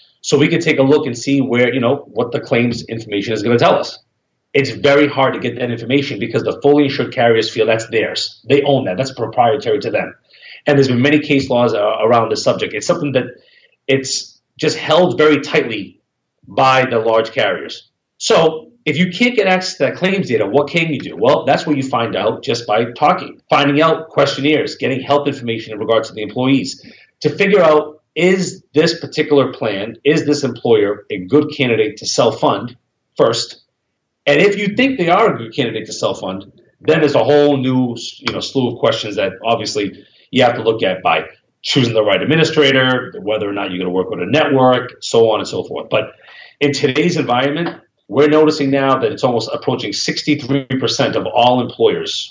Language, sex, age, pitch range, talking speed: English, male, 40-59, 120-150 Hz, 200 wpm